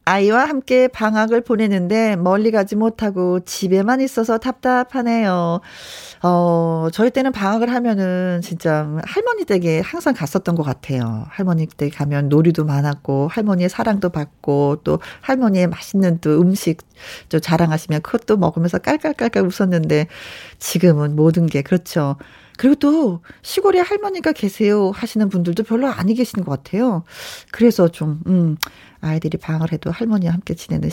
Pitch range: 170-240 Hz